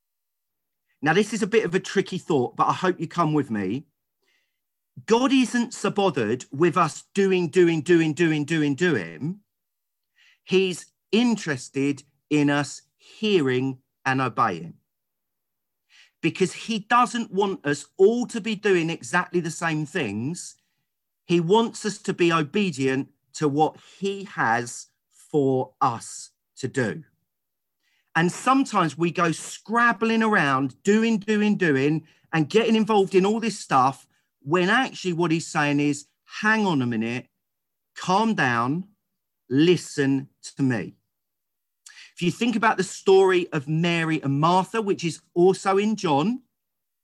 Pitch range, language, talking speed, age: 150-205 Hz, English, 140 wpm, 40-59